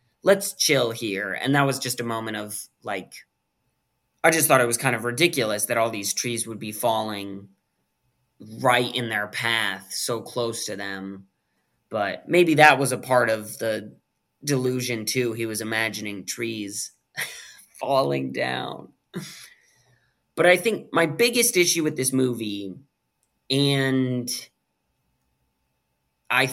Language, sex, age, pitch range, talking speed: English, male, 20-39, 110-145 Hz, 140 wpm